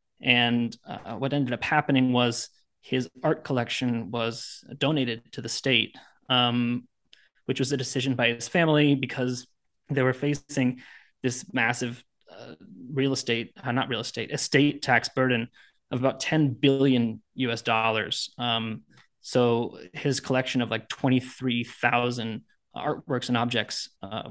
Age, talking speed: 20-39, 135 wpm